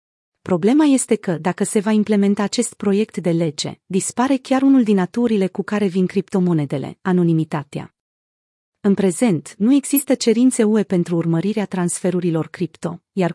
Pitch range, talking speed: 175-220 Hz, 145 wpm